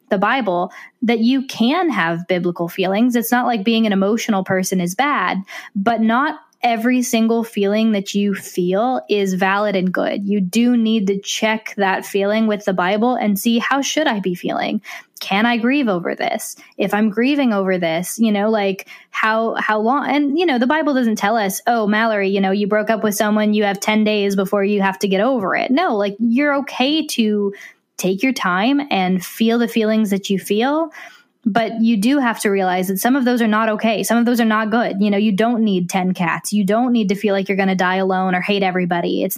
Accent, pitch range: American, 195-235 Hz